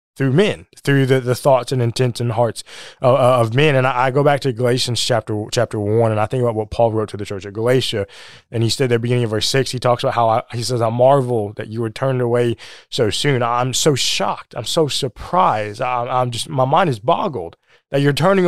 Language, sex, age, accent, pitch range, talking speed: English, male, 20-39, American, 120-145 Hz, 245 wpm